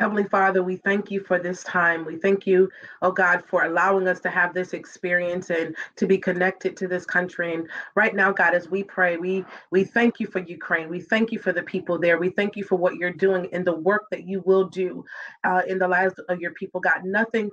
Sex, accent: female, American